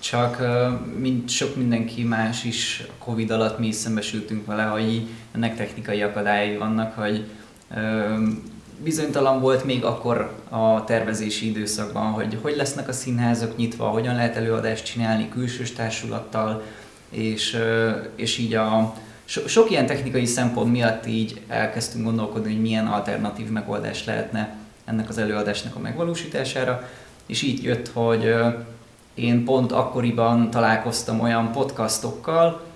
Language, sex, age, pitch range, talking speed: Hungarian, male, 20-39, 110-120 Hz, 125 wpm